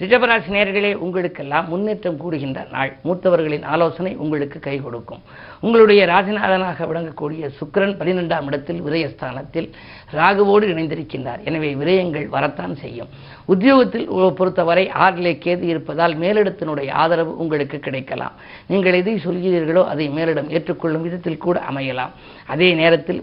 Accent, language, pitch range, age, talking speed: native, Tamil, 150-185 Hz, 50-69, 110 wpm